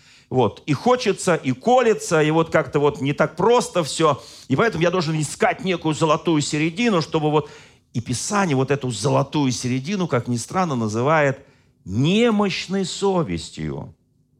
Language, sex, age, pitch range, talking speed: Russian, male, 40-59, 125-170 Hz, 145 wpm